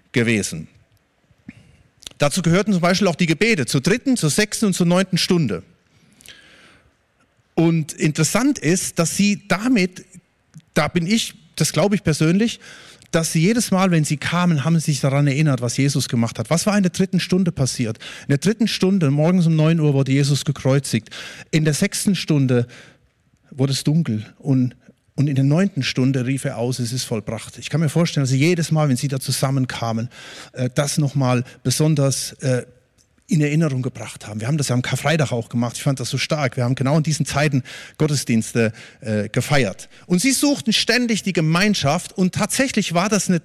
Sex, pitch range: male, 130-180 Hz